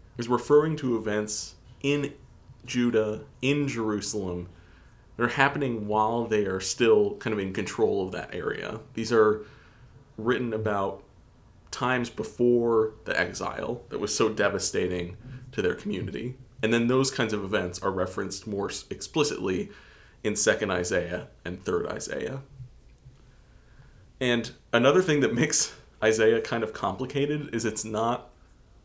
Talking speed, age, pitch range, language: 135 wpm, 30-49, 105-125 Hz, English